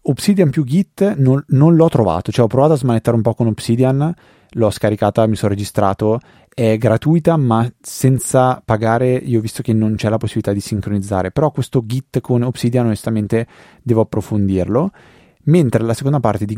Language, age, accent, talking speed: Italian, 30-49, native, 175 wpm